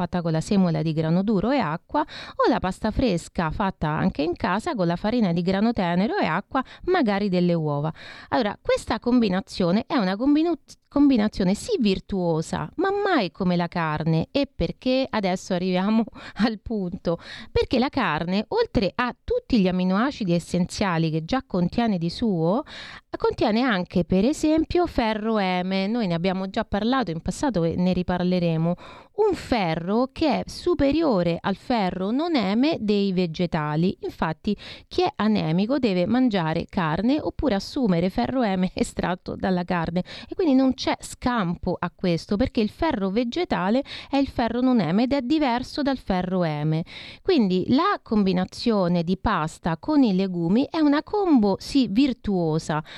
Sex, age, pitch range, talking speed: female, 30-49, 180-260 Hz, 155 wpm